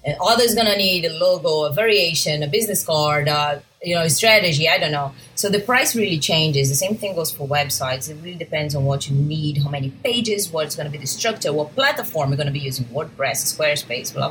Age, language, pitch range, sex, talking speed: 30-49, English, 145-190 Hz, female, 245 wpm